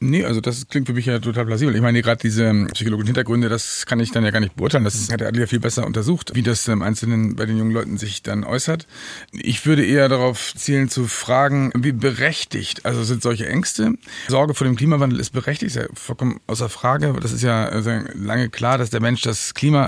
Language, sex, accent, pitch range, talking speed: German, male, German, 115-140 Hz, 225 wpm